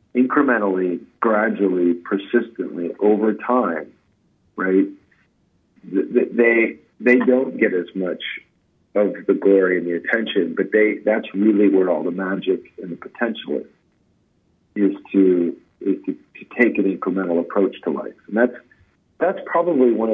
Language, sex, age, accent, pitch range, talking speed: English, male, 50-69, American, 100-125 Hz, 140 wpm